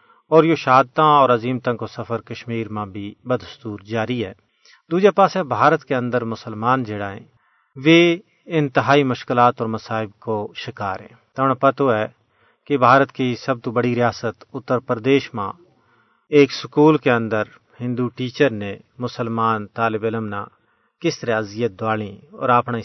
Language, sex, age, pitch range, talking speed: Urdu, male, 40-59, 115-140 Hz, 145 wpm